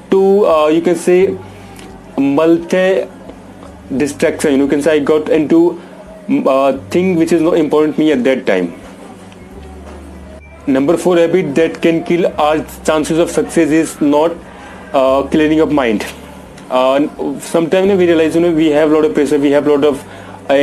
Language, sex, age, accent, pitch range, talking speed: English, male, 30-49, Indian, 145-170 Hz, 160 wpm